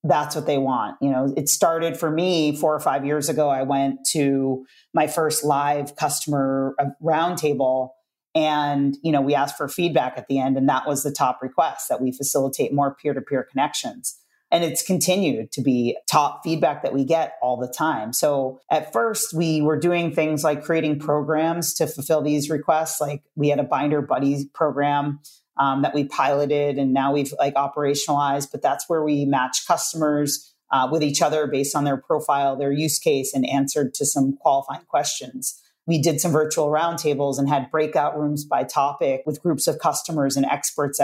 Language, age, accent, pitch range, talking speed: English, 30-49, American, 135-155 Hz, 185 wpm